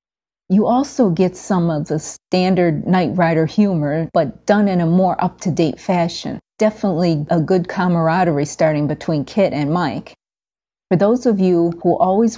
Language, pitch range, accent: English, 165-200 Hz, American